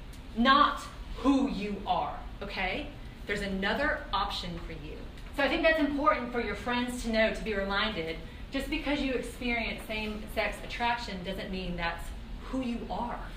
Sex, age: female, 30-49